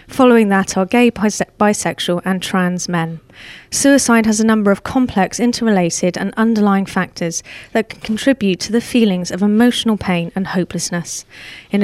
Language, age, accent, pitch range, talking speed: English, 30-49, British, 185-230 Hz, 150 wpm